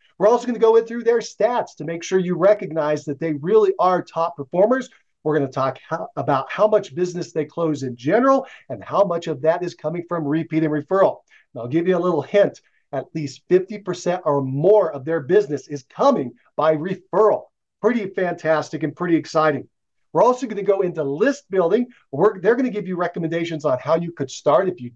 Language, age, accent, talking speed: English, 50-69, American, 215 wpm